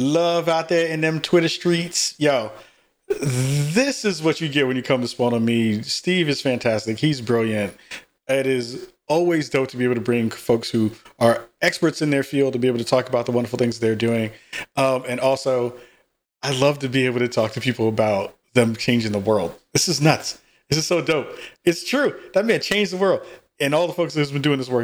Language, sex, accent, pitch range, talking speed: English, male, American, 120-150 Hz, 225 wpm